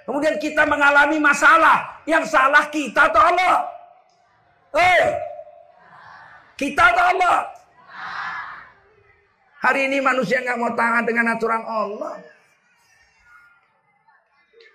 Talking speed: 90 wpm